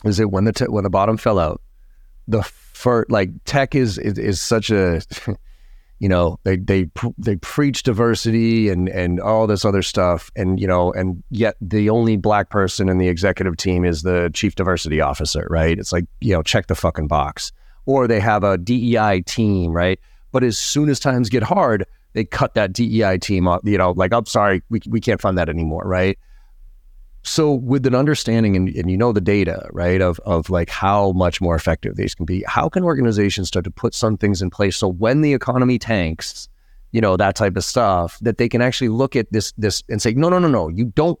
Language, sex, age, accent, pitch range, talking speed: English, male, 30-49, American, 90-120 Hz, 220 wpm